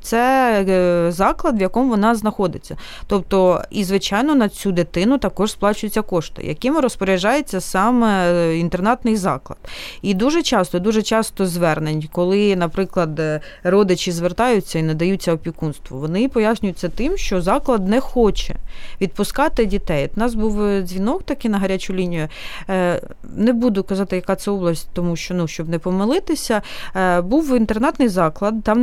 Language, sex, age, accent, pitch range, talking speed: Ukrainian, female, 30-49, native, 180-245 Hz, 135 wpm